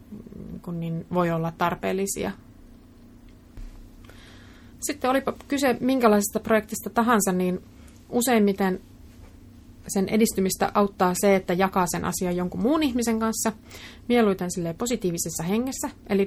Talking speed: 105 wpm